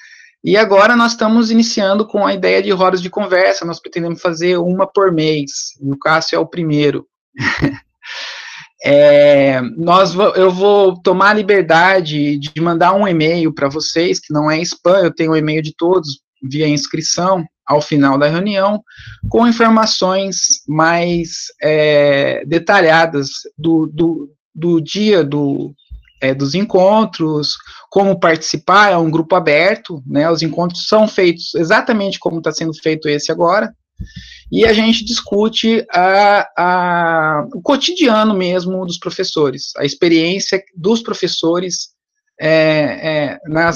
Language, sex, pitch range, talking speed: Portuguese, male, 155-195 Hz, 130 wpm